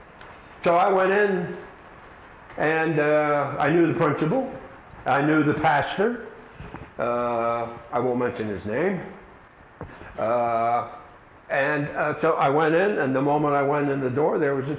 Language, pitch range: English, 115-150 Hz